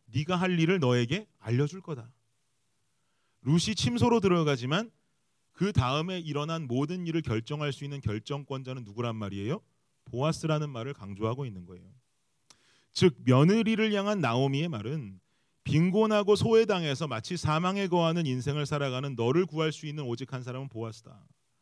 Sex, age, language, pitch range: male, 30-49, Korean, 125-170 Hz